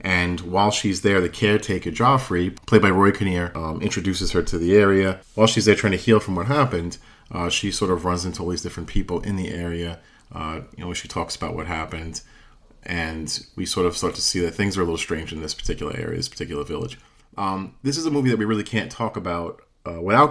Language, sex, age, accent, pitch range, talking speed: English, male, 40-59, American, 85-105 Hz, 235 wpm